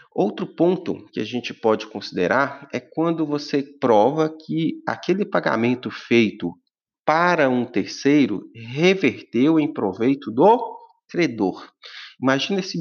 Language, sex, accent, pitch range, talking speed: Portuguese, male, Brazilian, 110-150 Hz, 115 wpm